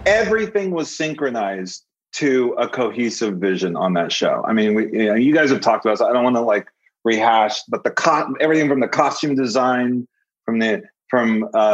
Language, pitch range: English, 110-155 Hz